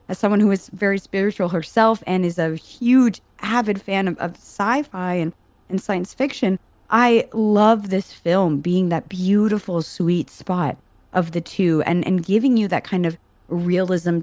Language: English